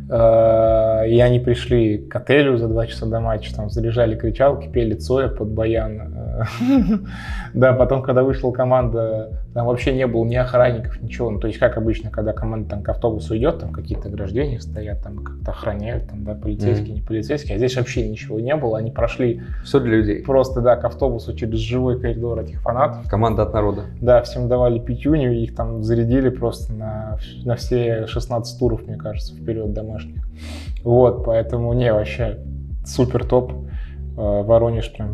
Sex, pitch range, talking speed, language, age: male, 105-120 Hz, 165 wpm, Russian, 20-39